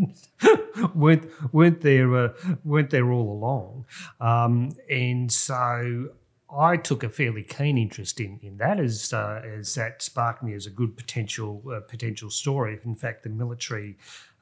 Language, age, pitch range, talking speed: English, 40-59, 105-130 Hz, 155 wpm